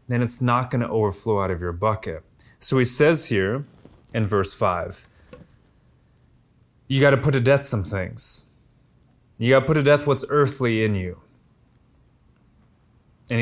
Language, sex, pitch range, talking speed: English, male, 120-165 Hz, 160 wpm